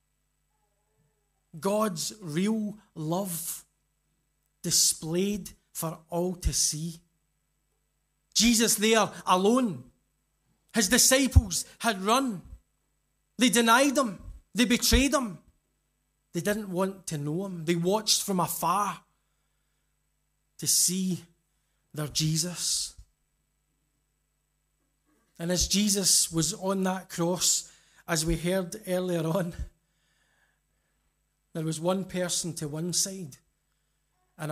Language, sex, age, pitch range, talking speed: English, male, 30-49, 155-210 Hz, 95 wpm